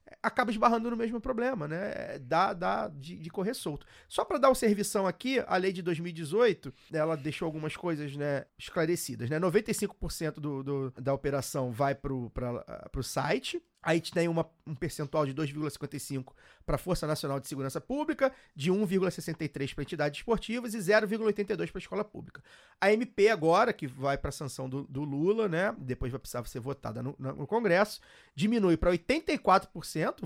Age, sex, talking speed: 30-49, male, 175 wpm